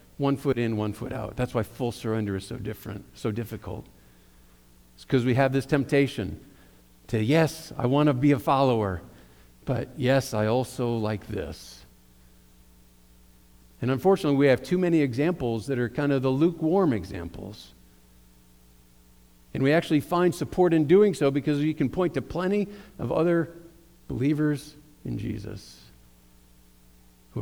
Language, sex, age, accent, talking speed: English, male, 50-69, American, 150 wpm